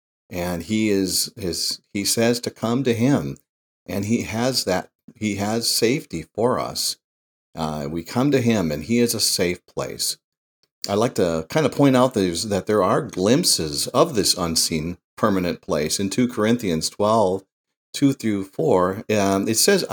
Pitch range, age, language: 90-125 Hz, 50-69, English